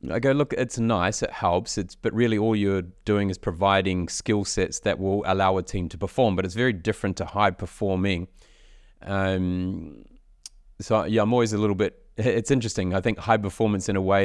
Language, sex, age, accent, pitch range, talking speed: English, male, 30-49, Australian, 95-110 Hz, 200 wpm